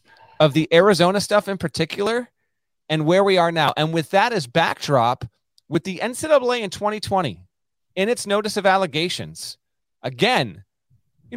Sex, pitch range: male, 130-190 Hz